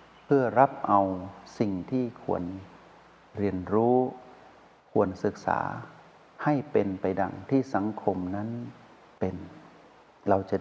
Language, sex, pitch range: Thai, male, 95-120 Hz